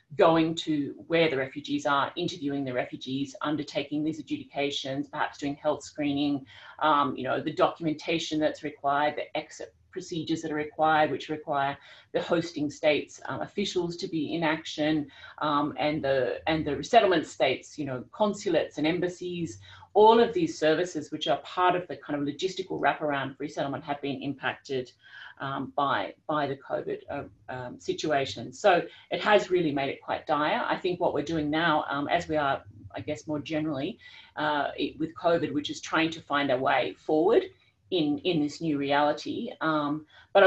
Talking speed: 175 wpm